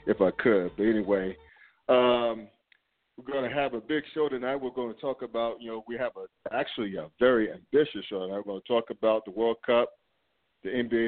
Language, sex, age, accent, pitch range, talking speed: English, male, 40-59, American, 105-120 Hz, 215 wpm